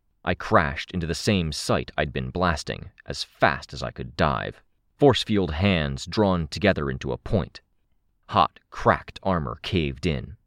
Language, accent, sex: English, American, male